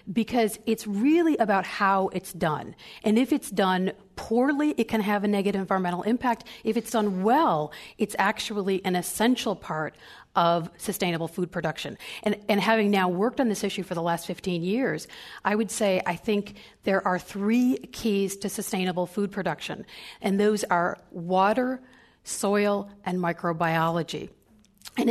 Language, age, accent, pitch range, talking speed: English, 40-59, American, 180-225 Hz, 160 wpm